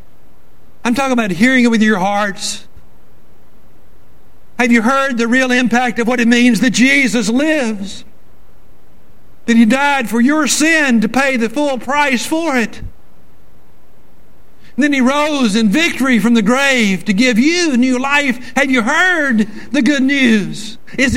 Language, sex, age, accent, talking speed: English, male, 60-79, American, 155 wpm